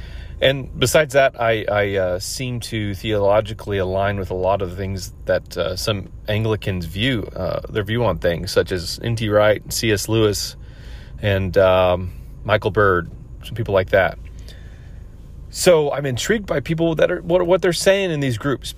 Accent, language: American, English